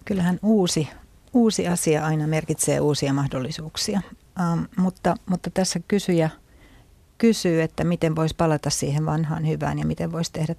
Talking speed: 135 wpm